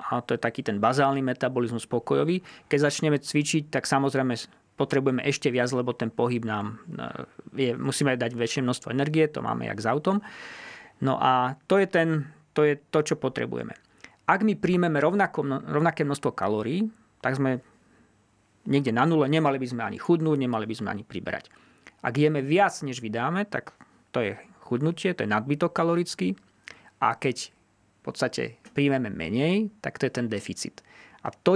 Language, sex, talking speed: Slovak, male, 170 wpm